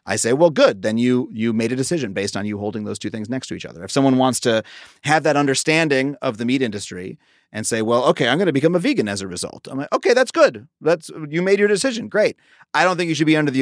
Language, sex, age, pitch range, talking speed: English, male, 30-49, 105-140 Hz, 280 wpm